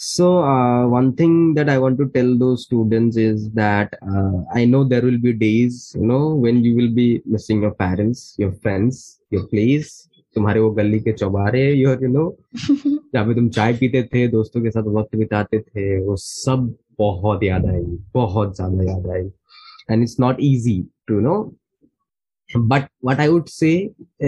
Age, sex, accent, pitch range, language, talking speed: 20-39, male, native, 110-150 Hz, Hindi, 180 wpm